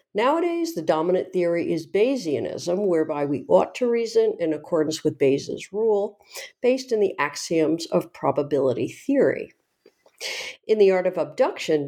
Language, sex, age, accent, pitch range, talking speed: English, female, 50-69, American, 155-245 Hz, 140 wpm